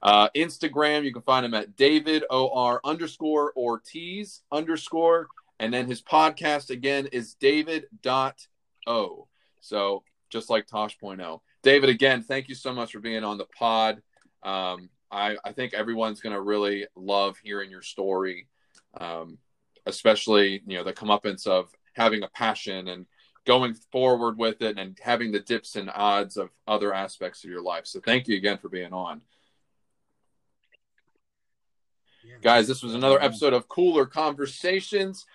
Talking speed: 160 wpm